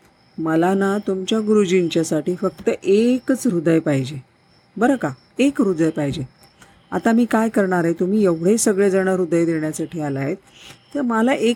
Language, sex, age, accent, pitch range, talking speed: Marathi, female, 50-69, native, 160-205 Hz, 85 wpm